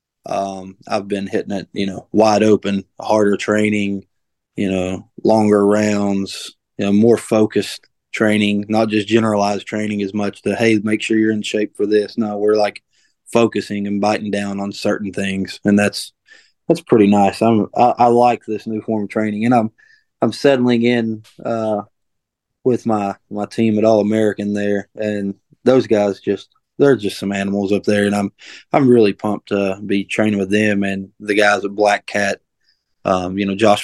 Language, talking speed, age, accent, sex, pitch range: English, 185 wpm, 20-39, American, male, 100-115 Hz